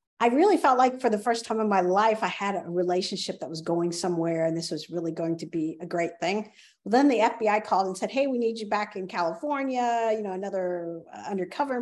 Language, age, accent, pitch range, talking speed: English, 50-69, American, 180-230 Hz, 245 wpm